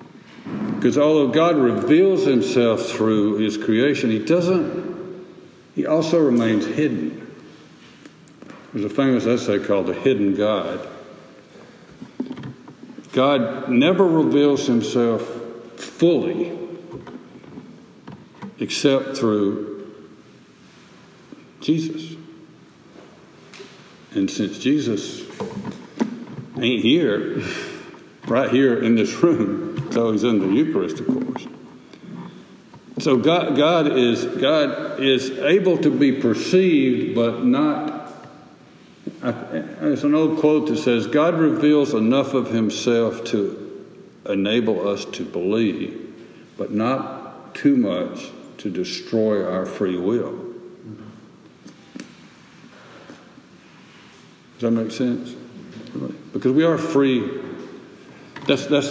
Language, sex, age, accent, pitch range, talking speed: English, male, 60-79, American, 115-170 Hz, 95 wpm